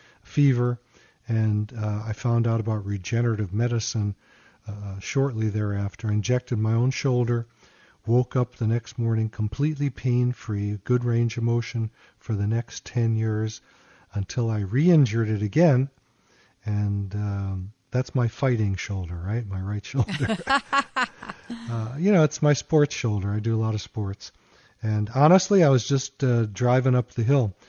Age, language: 40-59, English